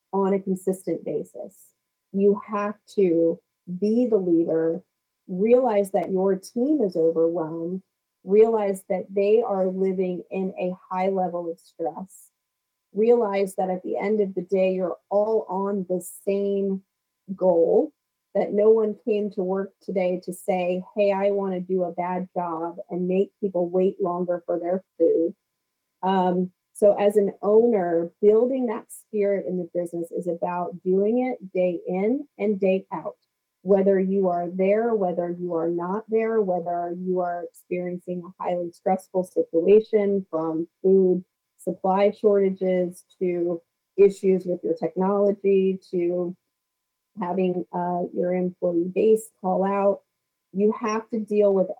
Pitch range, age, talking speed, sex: 180-200 Hz, 30-49, 140 wpm, female